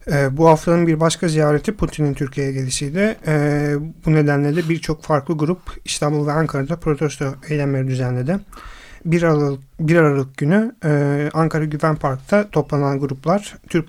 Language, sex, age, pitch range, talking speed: Turkish, male, 40-59, 140-165 Hz, 135 wpm